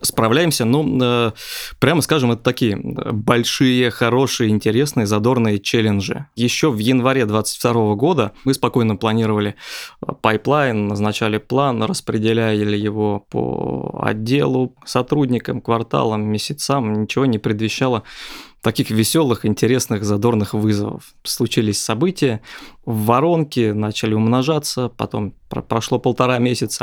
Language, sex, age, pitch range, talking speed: Russian, male, 20-39, 110-130 Hz, 110 wpm